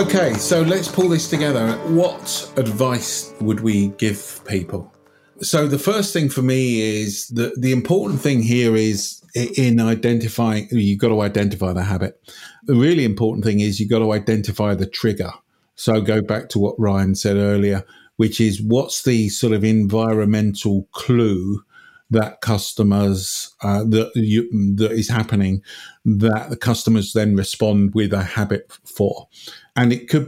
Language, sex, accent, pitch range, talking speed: English, male, British, 100-115 Hz, 155 wpm